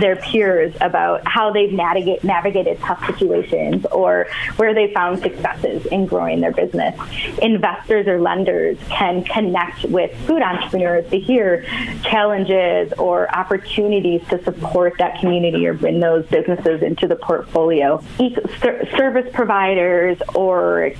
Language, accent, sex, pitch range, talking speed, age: English, American, female, 175-215 Hz, 125 wpm, 20-39